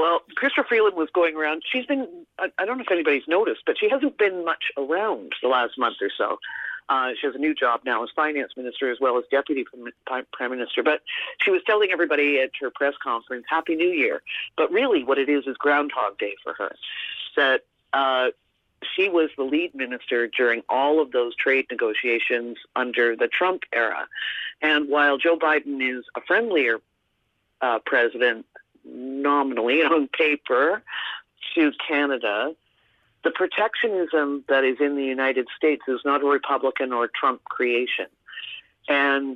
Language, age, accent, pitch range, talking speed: English, 50-69, American, 130-175 Hz, 170 wpm